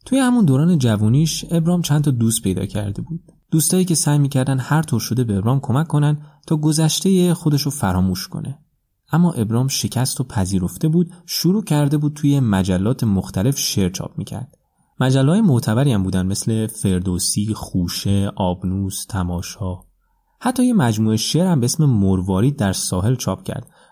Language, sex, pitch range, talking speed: Persian, male, 100-150 Hz, 165 wpm